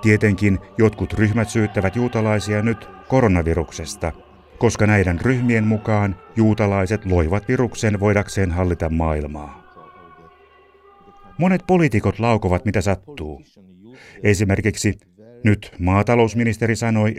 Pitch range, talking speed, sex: 95-120 Hz, 90 wpm, male